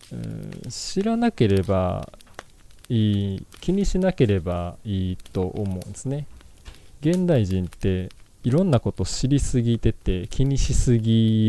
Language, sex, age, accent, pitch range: Japanese, male, 20-39, native, 95-120 Hz